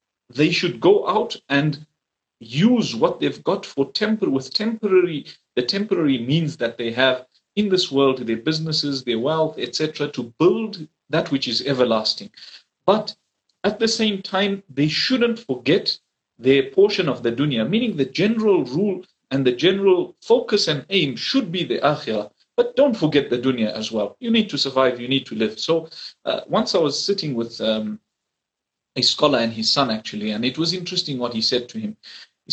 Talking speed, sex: 185 wpm, male